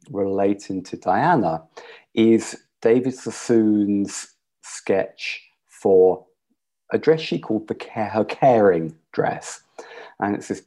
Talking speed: 100 wpm